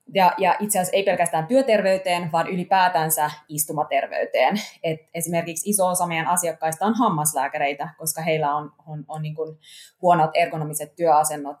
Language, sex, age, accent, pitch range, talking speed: Finnish, female, 20-39, native, 150-175 Hz, 120 wpm